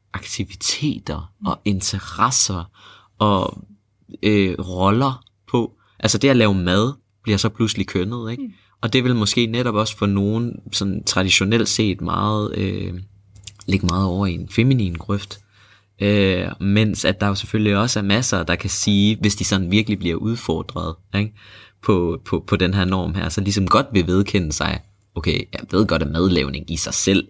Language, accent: Danish, native